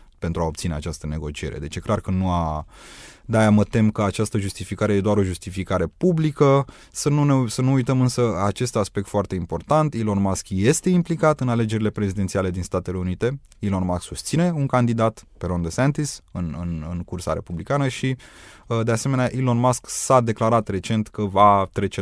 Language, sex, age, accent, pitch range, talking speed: Romanian, male, 20-39, native, 90-125 Hz, 185 wpm